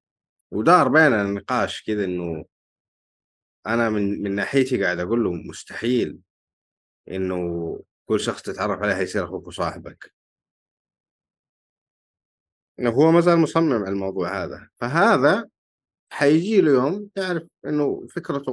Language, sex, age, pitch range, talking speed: Arabic, male, 30-49, 90-135 Hz, 115 wpm